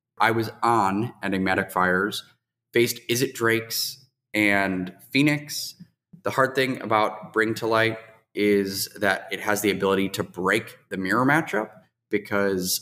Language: English